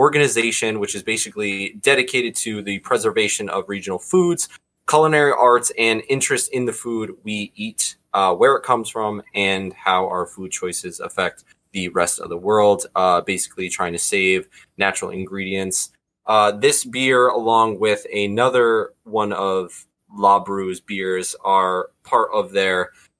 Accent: American